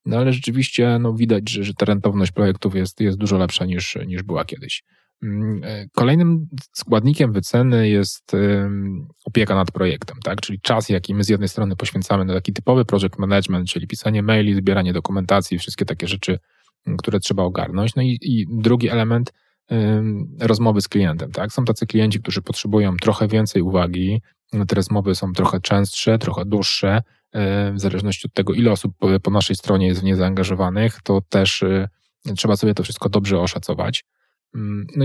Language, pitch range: Polish, 95-115 Hz